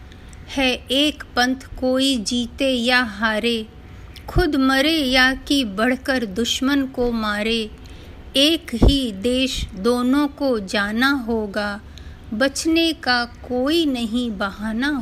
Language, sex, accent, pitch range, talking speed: Hindi, female, native, 225-270 Hz, 110 wpm